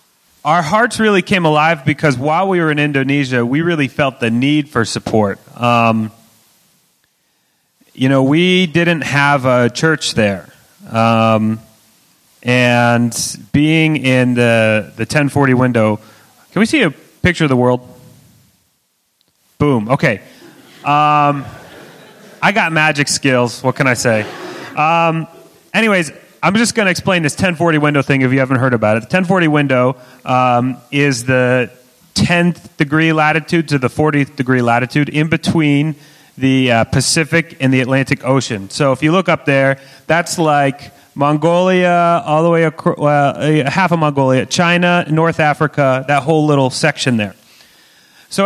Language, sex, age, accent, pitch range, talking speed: English, male, 30-49, American, 125-160 Hz, 150 wpm